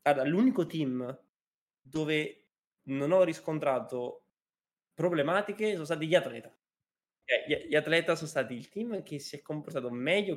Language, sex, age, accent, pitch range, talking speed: Italian, male, 20-39, native, 130-165 Hz, 140 wpm